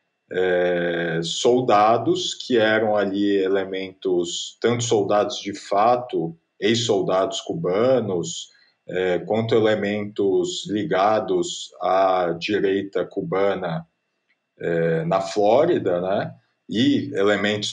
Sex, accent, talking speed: male, Brazilian, 85 wpm